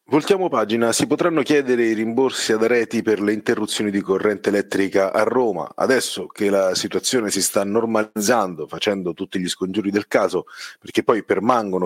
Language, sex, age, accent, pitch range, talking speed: Italian, male, 30-49, native, 95-125 Hz, 165 wpm